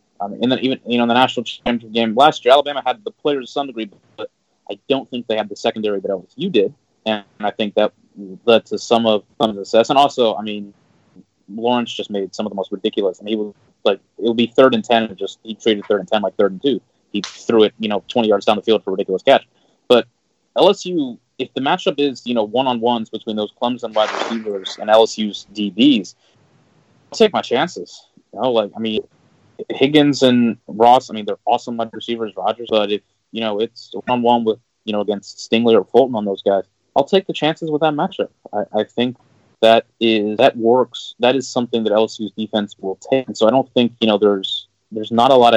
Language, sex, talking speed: English, male, 235 wpm